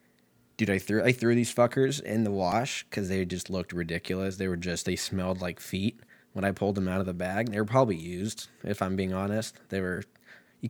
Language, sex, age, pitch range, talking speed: English, male, 20-39, 90-115 Hz, 230 wpm